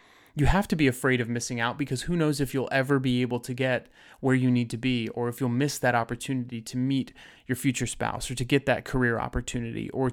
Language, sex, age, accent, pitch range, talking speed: English, male, 30-49, American, 120-145 Hz, 245 wpm